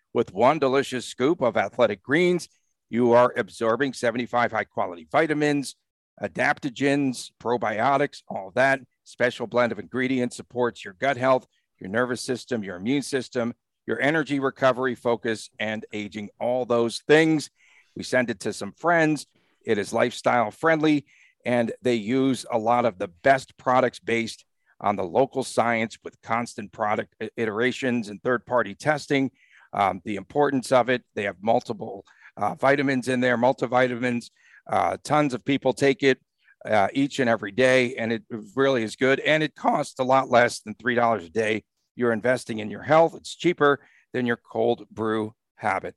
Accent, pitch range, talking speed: American, 115-135 Hz, 160 wpm